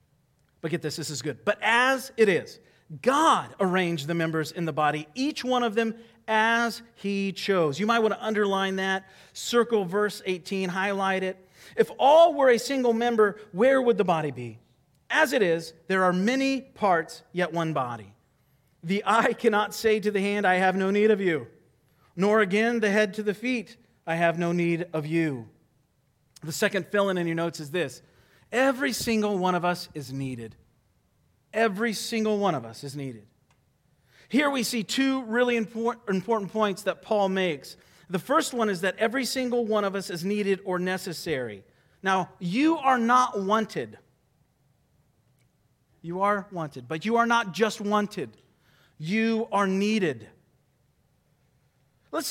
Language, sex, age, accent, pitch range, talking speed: English, male, 40-59, American, 165-230 Hz, 165 wpm